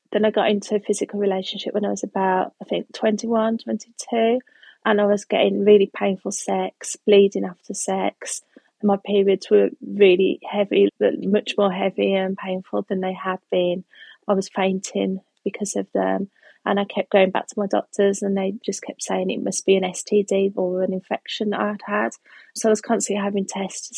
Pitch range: 190-210 Hz